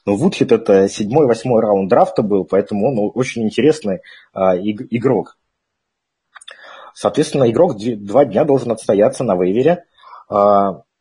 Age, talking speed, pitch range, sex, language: 30-49, 115 wpm, 100-140 Hz, male, Russian